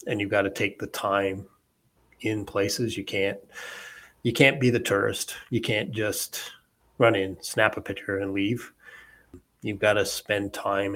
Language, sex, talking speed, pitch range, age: English, male, 170 wpm, 100-105 Hz, 30-49